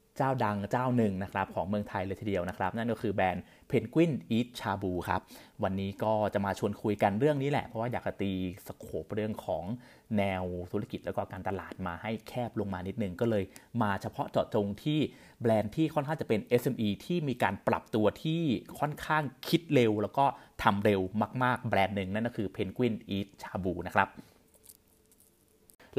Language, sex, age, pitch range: Thai, male, 30-49, 100-130 Hz